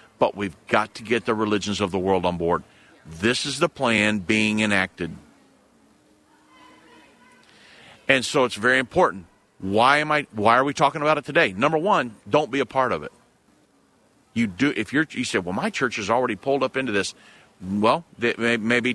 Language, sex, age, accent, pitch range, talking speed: English, male, 50-69, American, 105-145 Hz, 195 wpm